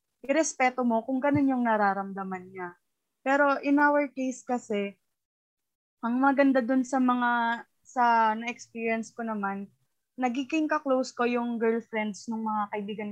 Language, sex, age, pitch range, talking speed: English, female, 20-39, 210-250 Hz, 135 wpm